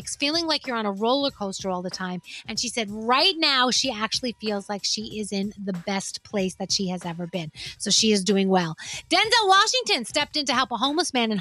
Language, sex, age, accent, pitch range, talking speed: English, female, 30-49, American, 210-305 Hz, 235 wpm